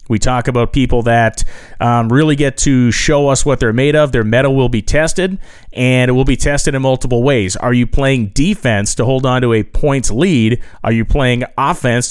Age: 30-49